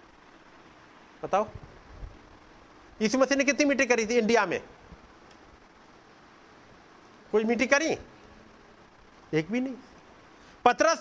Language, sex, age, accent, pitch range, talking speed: Hindi, male, 50-69, native, 180-270 Hz, 95 wpm